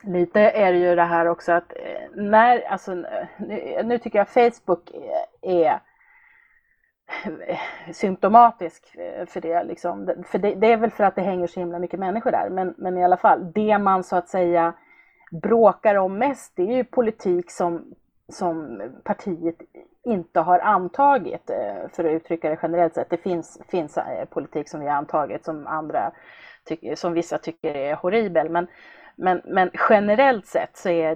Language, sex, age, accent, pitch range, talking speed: Swedish, female, 30-49, native, 170-225 Hz, 165 wpm